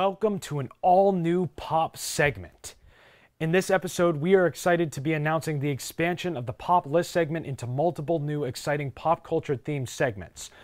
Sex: male